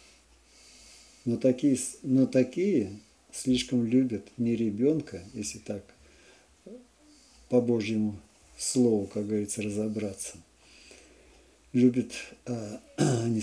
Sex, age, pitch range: male, 50-69, 105-125 Hz